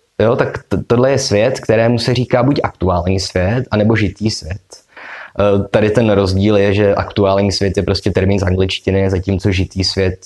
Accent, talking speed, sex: native, 175 wpm, male